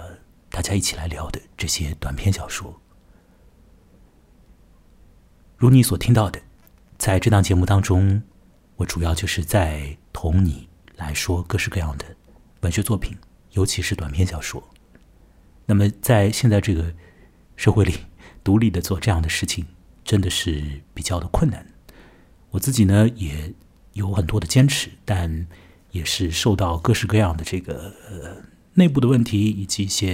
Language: Chinese